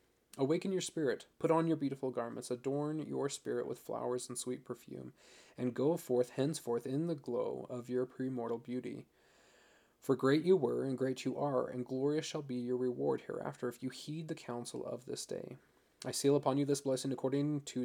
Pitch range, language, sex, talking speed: 125-140 Hz, English, male, 195 wpm